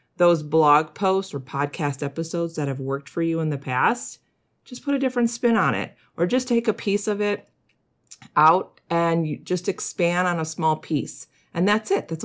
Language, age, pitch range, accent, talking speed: English, 40-59, 150-200 Hz, American, 195 wpm